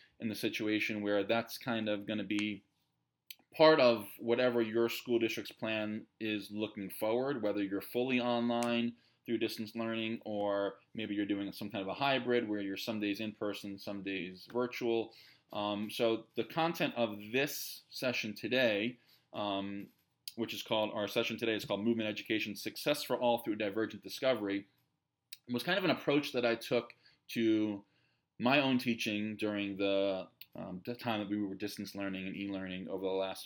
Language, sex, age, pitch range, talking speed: English, male, 20-39, 100-120 Hz, 175 wpm